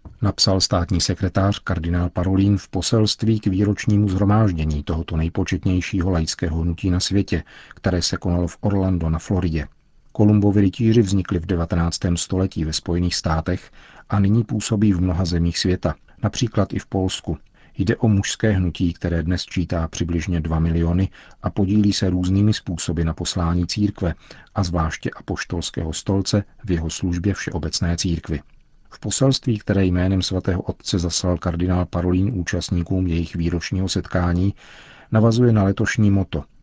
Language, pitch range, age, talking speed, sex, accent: Czech, 85-100 Hz, 50-69, 140 wpm, male, native